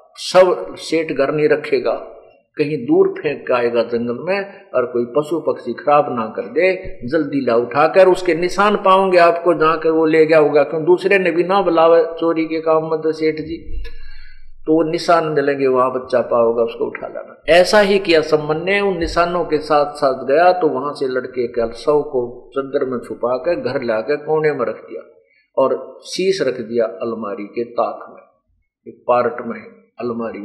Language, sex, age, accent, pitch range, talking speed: Hindi, male, 50-69, native, 130-190 Hz, 185 wpm